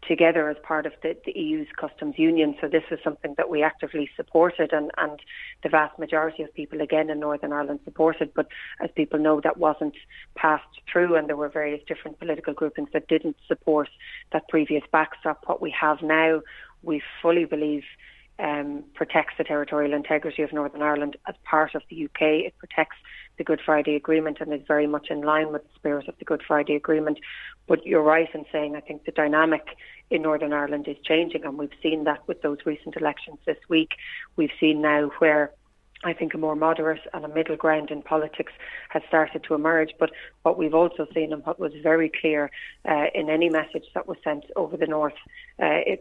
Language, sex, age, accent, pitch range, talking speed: English, female, 30-49, Irish, 150-160 Hz, 200 wpm